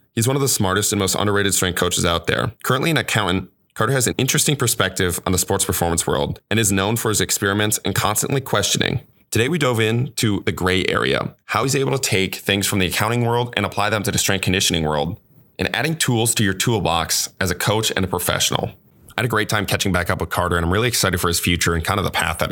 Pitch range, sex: 90-105 Hz, male